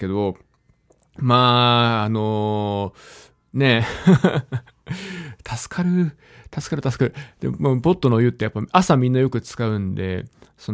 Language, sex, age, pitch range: Japanese, male, 20-39, 110-145 Hz